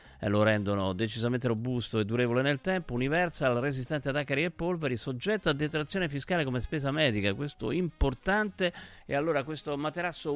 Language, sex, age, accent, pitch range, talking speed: Italian, male, 50-69, native, 115-155 Hz, 160 wpm